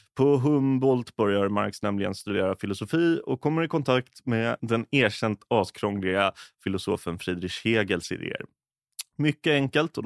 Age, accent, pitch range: 30-49, Swedish, 100-130 Hz